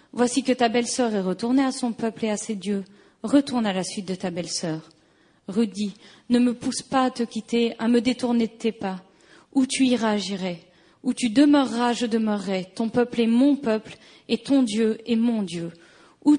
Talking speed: 200 wpm